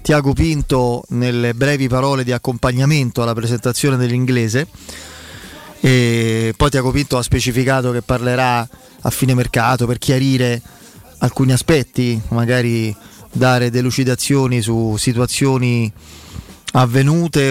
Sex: male